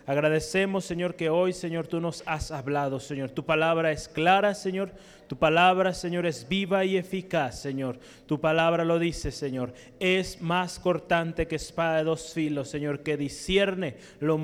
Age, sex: 30-49, male